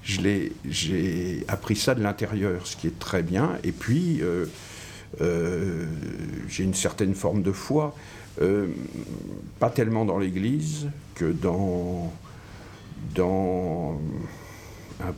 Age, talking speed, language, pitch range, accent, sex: 60-79, 125 wpm, French, 90-115 Hz, French, male